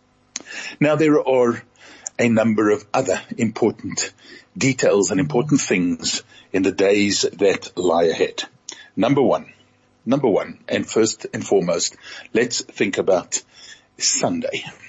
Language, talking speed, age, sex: English, 120 wpm, 50-69, male